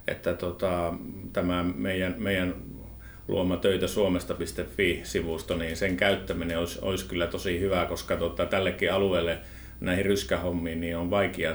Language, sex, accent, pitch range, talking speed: Finnish, male, native, 85-95 Hz, 130 wpm